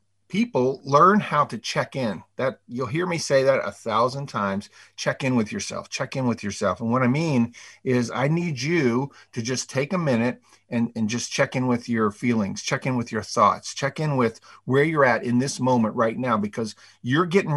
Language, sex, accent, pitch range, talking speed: English, male, American, 110-140 Hz, 215 wpm